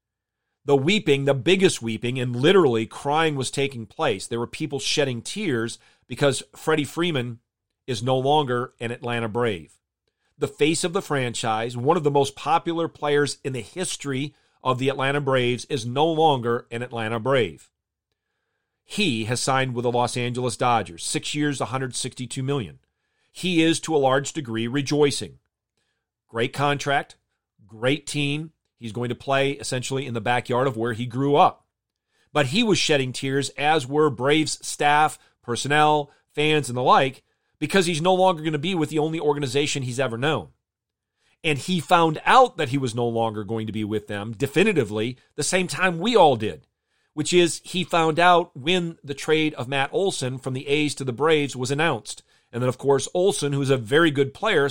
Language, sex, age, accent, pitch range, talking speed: English, male, 40-59, American, 120-155 Hz, 180 wpm